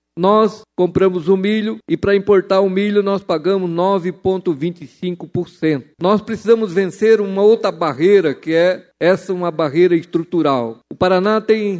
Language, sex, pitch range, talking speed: Portuguese, male, 170-205 Hz, 135 wpm